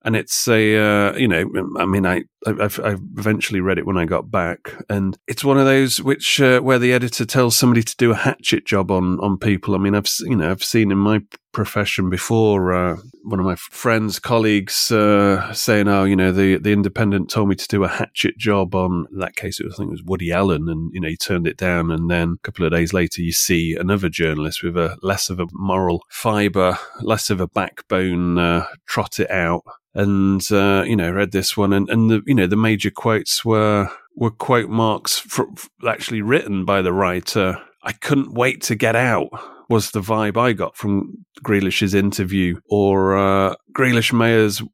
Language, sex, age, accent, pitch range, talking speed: English, male, 30-49, British, 95-115 Hz, 215 wpm